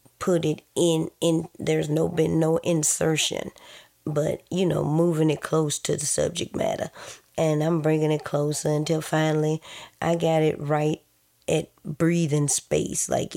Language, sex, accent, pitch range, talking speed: English, female, American, 140-165 Hz, 155 wpm